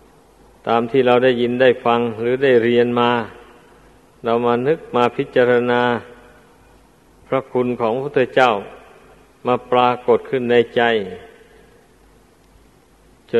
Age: 50-69